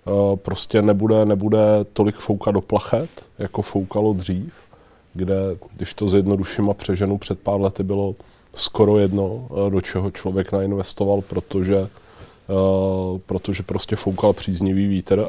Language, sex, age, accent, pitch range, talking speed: Czech, male, 20-39, native, 95-100 Hz, 135 wpm